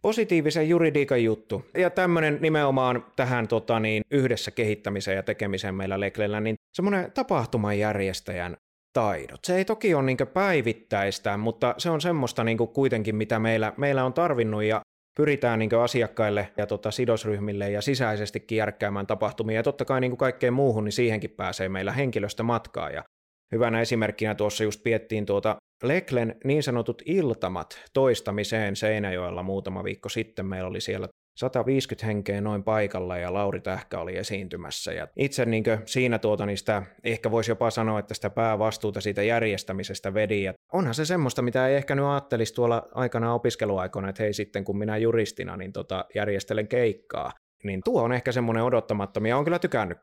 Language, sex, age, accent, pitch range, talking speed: Finnish, male, 30-49, native, 105-125 Hz, 160 wpm